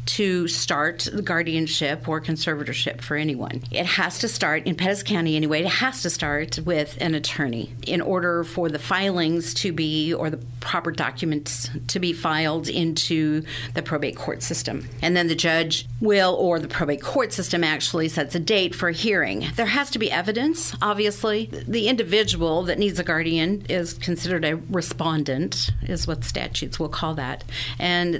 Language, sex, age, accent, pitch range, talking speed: English, female, 50-69, American, 150-190 Hz, 175 wpm